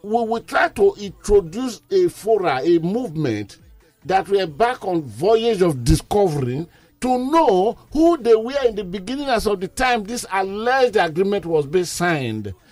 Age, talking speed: 50-69, 165 wpm